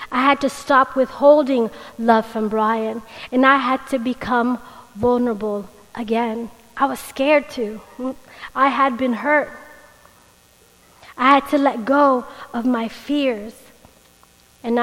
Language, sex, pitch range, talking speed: English, female, 230-265 Hz, 130 wpm